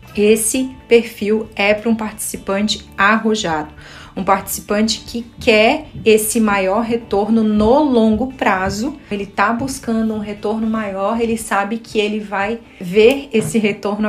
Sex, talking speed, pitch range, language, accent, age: female, 130 wpm, 195-230 Hz, Portuguese, Brazilian, 30-49